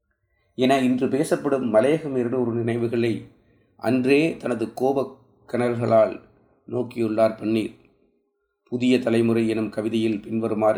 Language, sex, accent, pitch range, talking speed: Tamil, male, native, 105-125 Hz, 100 wpm